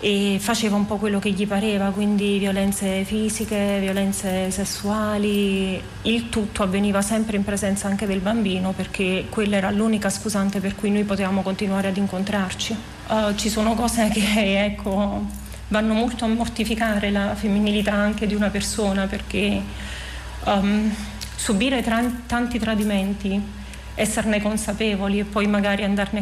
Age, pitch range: 40-59, 200-220 Hz